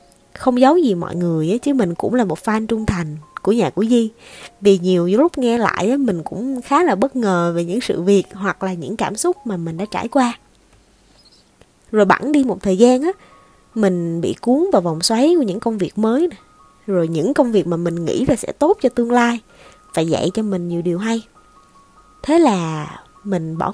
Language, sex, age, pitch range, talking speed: Vietnamese, female, 20-39, 175-260 Hz, 210 wpm